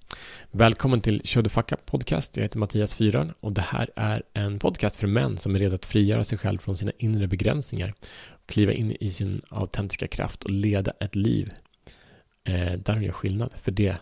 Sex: male